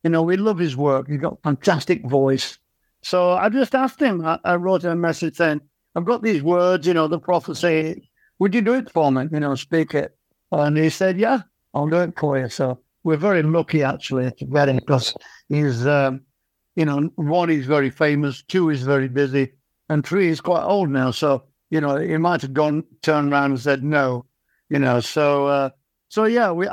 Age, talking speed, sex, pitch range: 60-79, 205 wpm, male, 140-185 Hz